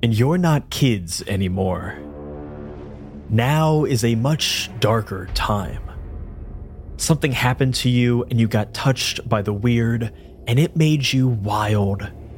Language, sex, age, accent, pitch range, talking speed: English, male, 30-49, American, 95-130 Hz, 130 wpm